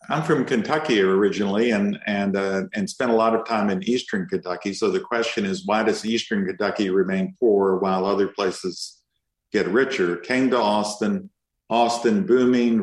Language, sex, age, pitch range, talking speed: English, male, 50-69, 100-120 Hz, 170 wpm